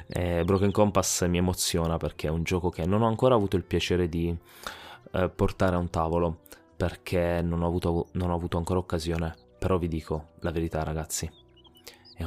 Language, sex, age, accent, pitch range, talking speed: Italian, male, 20-39, native, 85-95 Hz, 175 wpm